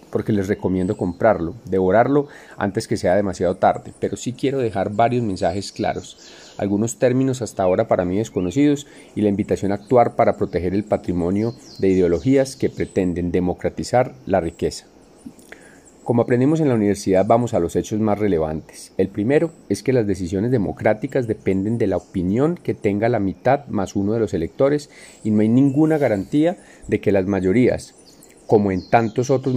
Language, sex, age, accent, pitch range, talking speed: Spanish, male, 30-49, Colombian, 100-130 Hz, 170 wpm